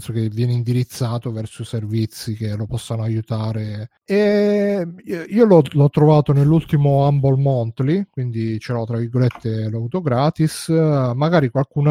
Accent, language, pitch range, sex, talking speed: native, Italian, 120-145 Hz, male, 140 wpm